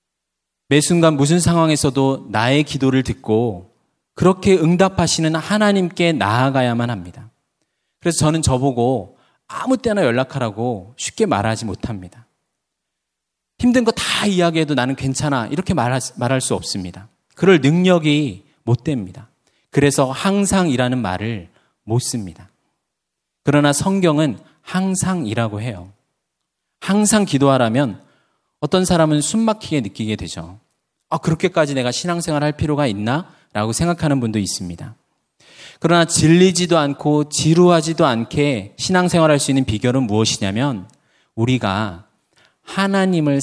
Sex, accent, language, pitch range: male, native, Korean, 115-165 Hz